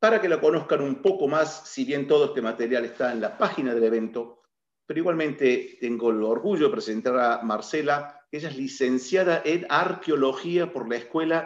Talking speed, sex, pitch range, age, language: 185 wpm, male, 130-180 Hz, 50-69, Portuguese